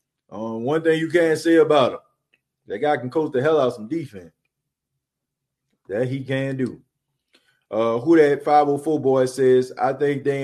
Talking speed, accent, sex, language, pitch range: 170 wpm, American, male, English, 125-155 Hz